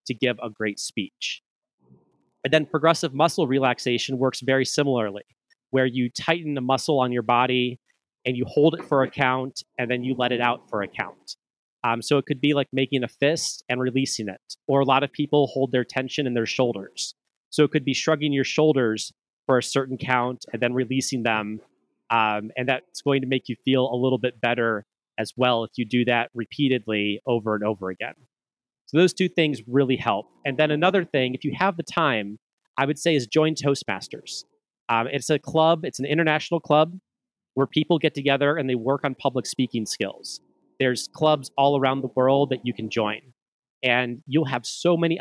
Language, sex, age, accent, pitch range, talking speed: English, male, 30-49, American, 120-145 Hz, 205 wpm